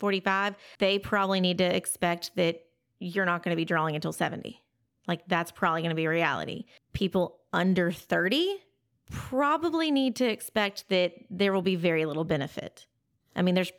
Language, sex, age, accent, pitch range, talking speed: English, female, 30-49, American, 170-195 Hz, 170 wpm